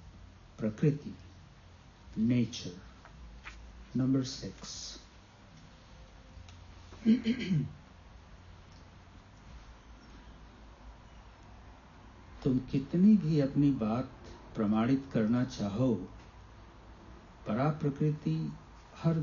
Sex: male